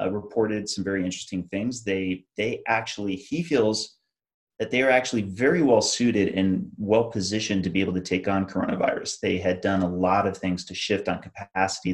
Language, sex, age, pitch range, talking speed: English, male, 30-49, 90-105 Hz, 190 wpm